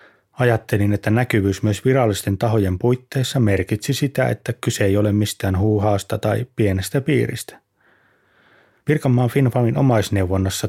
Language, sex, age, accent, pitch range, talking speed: Finnish, male, 30-49, native, 100-120 Hz, 120 wpm